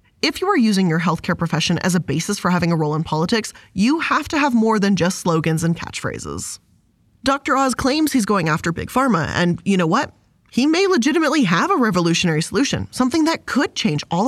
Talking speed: 210 wpm